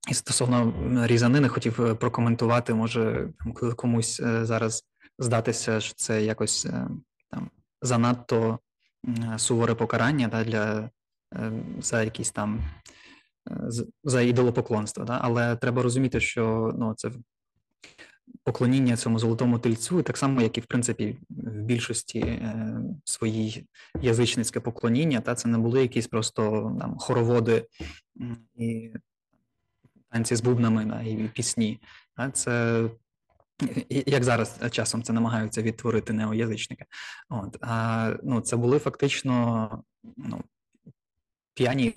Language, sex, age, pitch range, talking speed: Ukrainian, male, 20-39, 110-125 Hz, 110 wpm